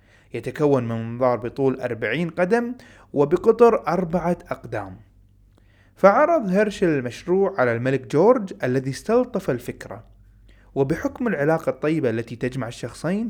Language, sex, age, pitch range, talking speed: Arabic, male, 30-49, 120-180 Hz, 110 wpm